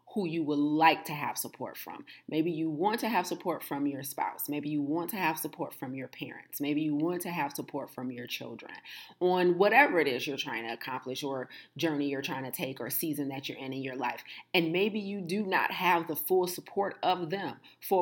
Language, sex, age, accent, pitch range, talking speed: English, female, 30-49, American, 145-180 Hz, 230 wpm